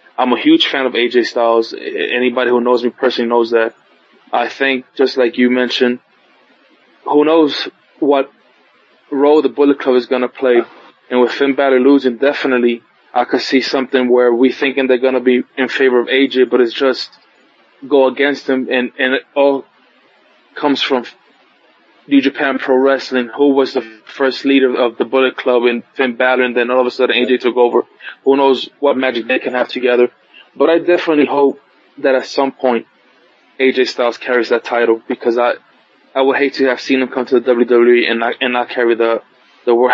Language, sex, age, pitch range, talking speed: English, male, 20-39, 120-135 Hz, 195 wpm